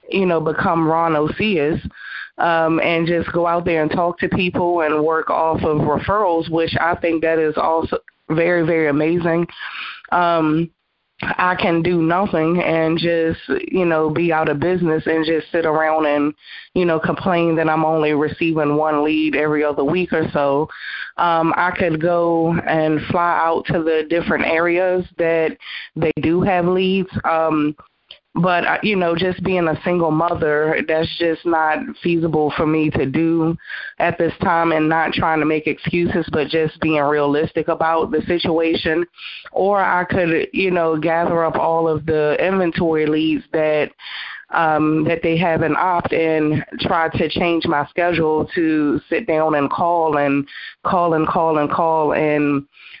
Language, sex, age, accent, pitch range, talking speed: English, female, 20-39, American, 155-170 Hz, 165 wpm